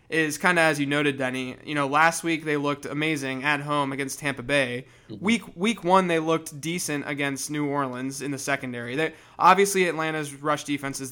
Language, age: English, 20-39